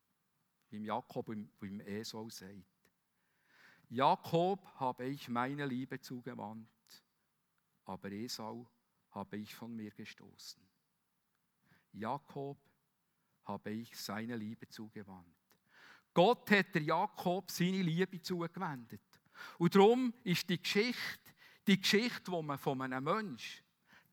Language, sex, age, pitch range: German, male, 50-69, 125-180 Hz